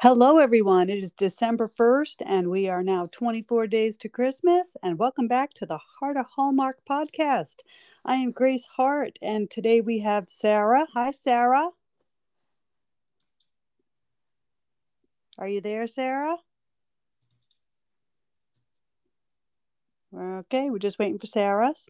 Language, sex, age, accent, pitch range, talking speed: English, female, 50-69, American, 200-255 Hz, 120 wpm